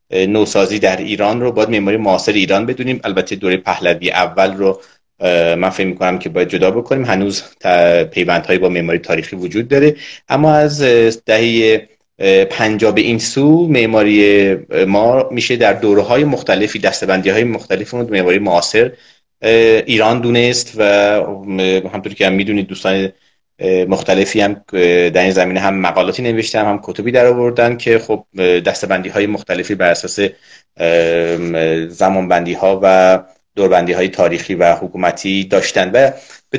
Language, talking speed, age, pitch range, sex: Persian, 140 wpm, 30-49, 95-115 Hz, male